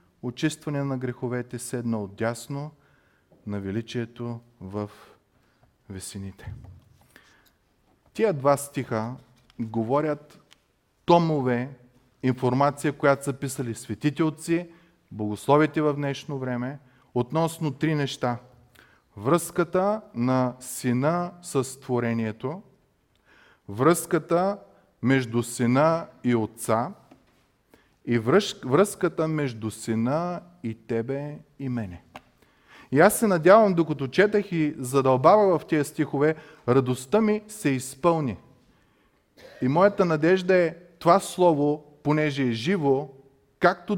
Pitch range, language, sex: 120-160 Hz, Bulgarian, male